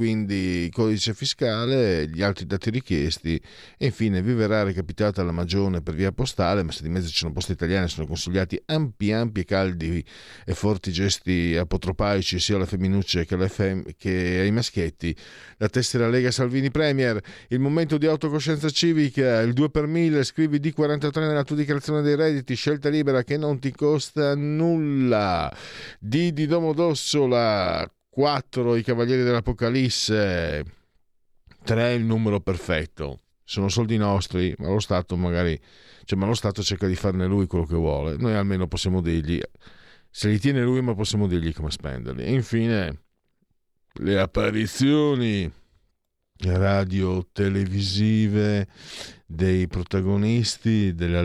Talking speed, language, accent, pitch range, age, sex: 140 wpm, Italian, native, 90-125 Hz, 50-69, male